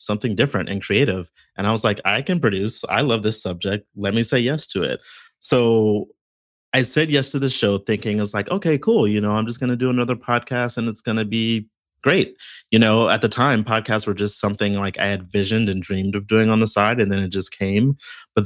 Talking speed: 245 wpm